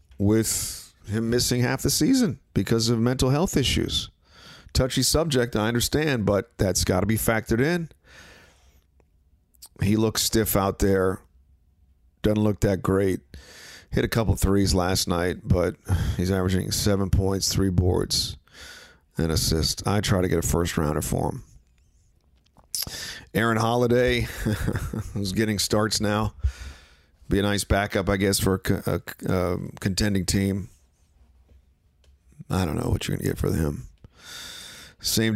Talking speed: 140 wpm